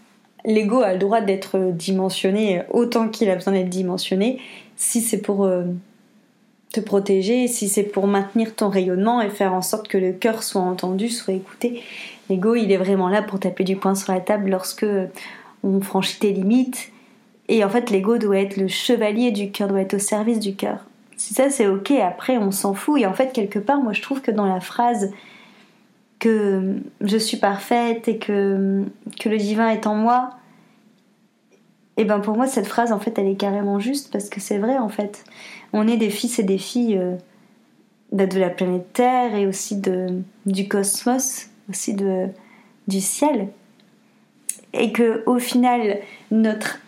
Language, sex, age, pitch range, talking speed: French, female, 30-49, 195-230 Hz, 185 wpm